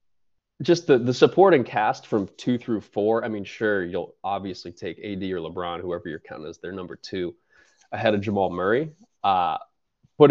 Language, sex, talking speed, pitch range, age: English, male, 180 wpm, 105-140 Hz, 20-39